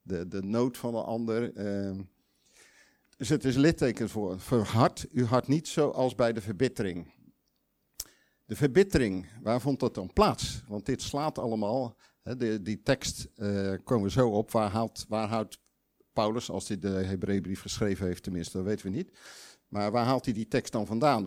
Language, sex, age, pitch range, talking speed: Dutch, male, 50-69, 95-125 Hz, 180 wpm